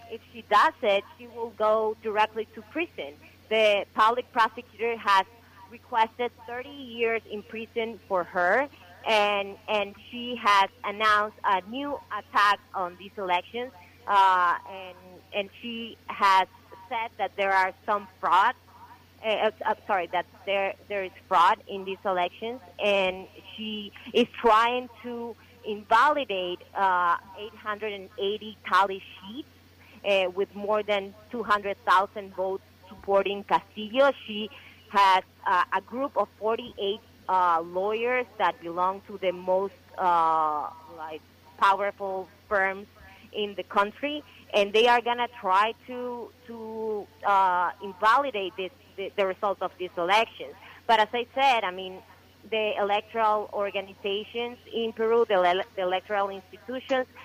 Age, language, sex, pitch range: 30-49, English, female, 190-225 Hz